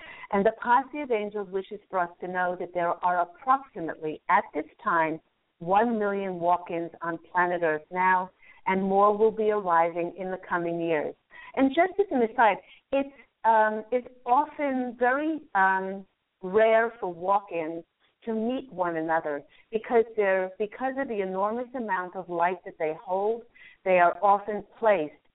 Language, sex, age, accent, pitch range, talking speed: English, female, 50-69, American, 170-215 Hz, 160 wpm